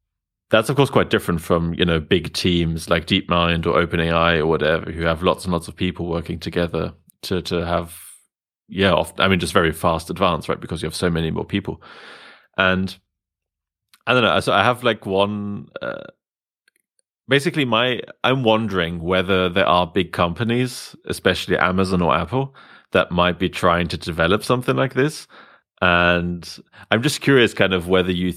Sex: male